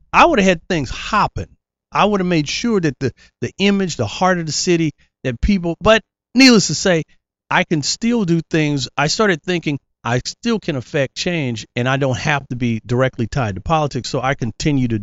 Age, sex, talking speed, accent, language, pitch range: 40-59, male, 210 wpm, American, English, 120-160 Hz